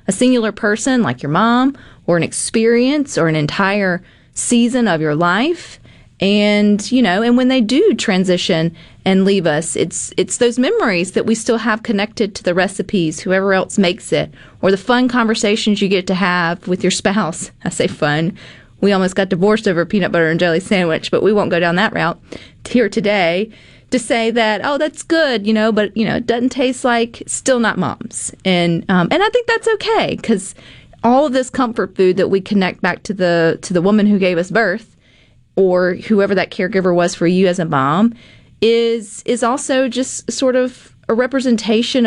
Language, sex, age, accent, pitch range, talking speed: English, female, 30-49, American, 175-235 Hz, 195 wpm